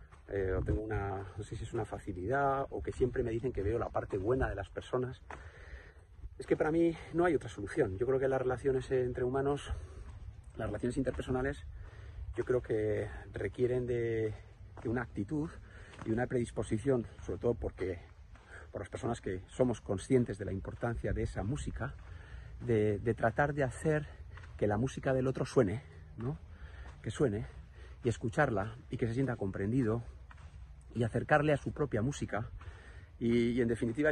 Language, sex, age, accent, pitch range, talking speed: Spanish, male, 40-59, Spanish, 100-130 Hz, 170 wpm